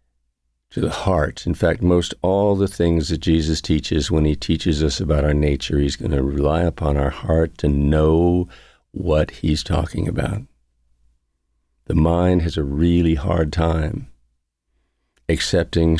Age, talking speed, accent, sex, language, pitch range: 50-69, 150 wpm, American, male, English, 75-85 Hz